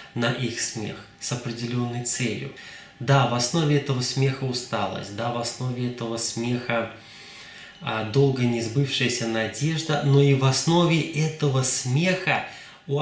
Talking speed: 130 wpm